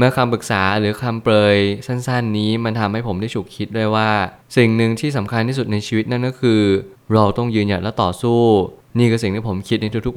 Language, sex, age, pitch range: Thai, male, 20-39, 100-120 Hz